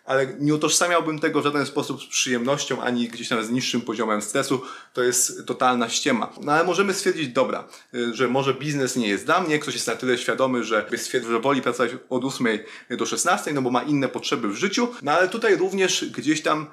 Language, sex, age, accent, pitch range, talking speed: Polish, male, 30-49, native, 125-160 Hz, 210 wpm